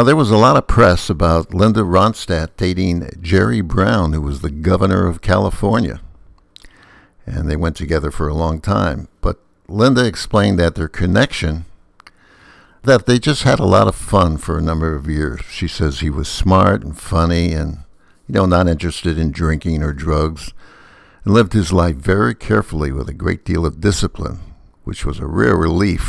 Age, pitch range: 60-79, 80-100 Hz